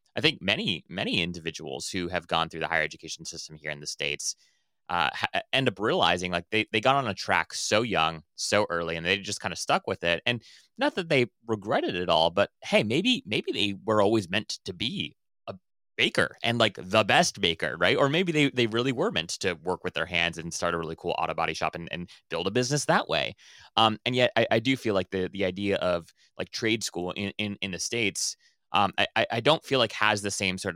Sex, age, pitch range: male, 20-39, 85-110 Hz